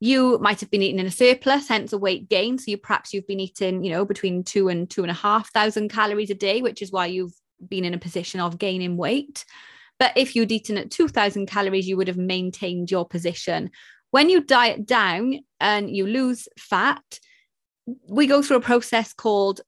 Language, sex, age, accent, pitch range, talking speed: English, female, 20-39, British, 190-225 Hz, 205 wpm